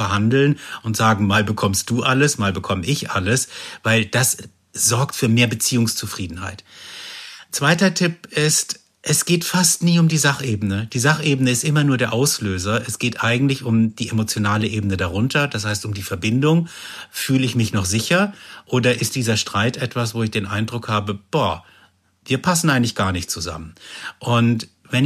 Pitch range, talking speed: 105-140 Hz, 170 wpm